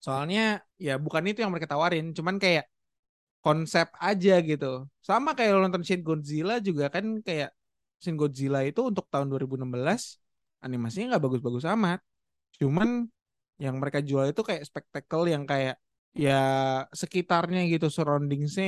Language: Indonesian